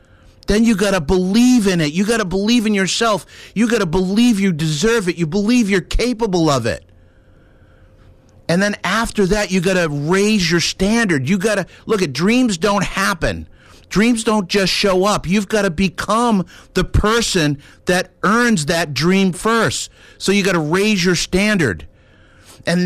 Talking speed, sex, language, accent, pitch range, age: 160 wpm, male, English, American, 155-210 Hz, 50-69